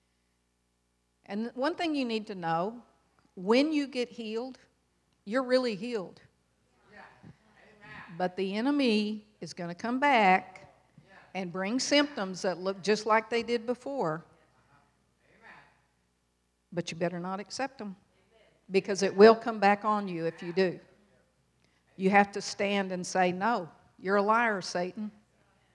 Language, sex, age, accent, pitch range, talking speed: English, female, 50-69, American, 175-225 Hz, 135 wpm